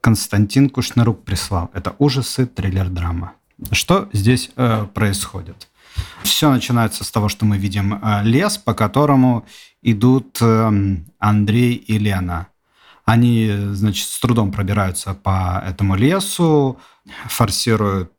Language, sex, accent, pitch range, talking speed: Russian, male, native, 100-130 Hz, 110 wpm